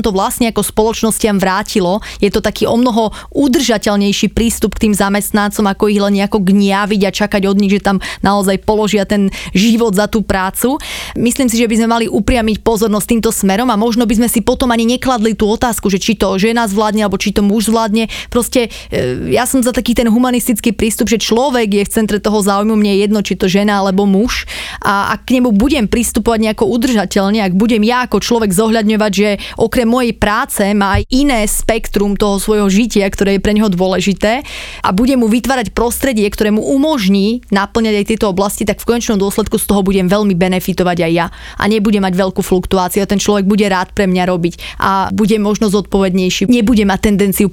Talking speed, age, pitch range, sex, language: 200 wpm, 20-39, 195-225 Hz, female, Slovak